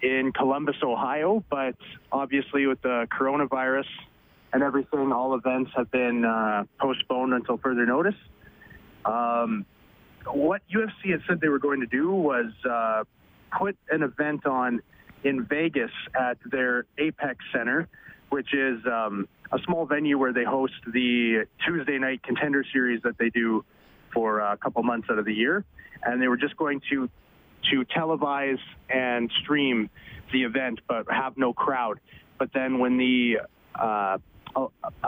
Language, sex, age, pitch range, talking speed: English, male, 30-49, 115-140 Hz, 150 wpm